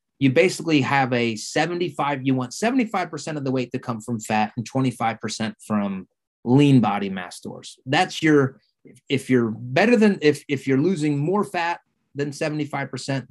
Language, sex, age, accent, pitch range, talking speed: English, male, 30-49, American, 120-150 Hz, 160 wpm